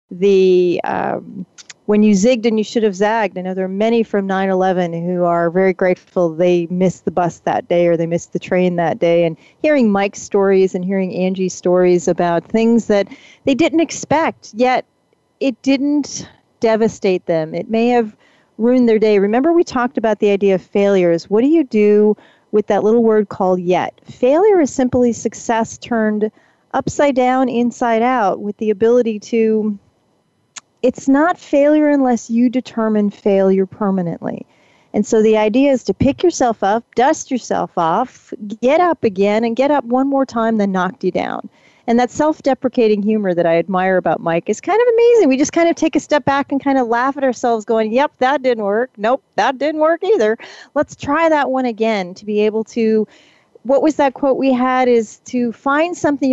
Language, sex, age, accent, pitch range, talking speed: English, female, 40-59, American, 195-260 Hz, 190 wpm